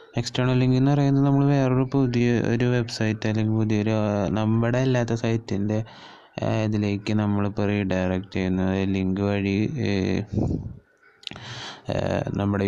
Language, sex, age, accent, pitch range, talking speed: Malayalam, male, 20-39, native, 100-120 Hz, 90 wpm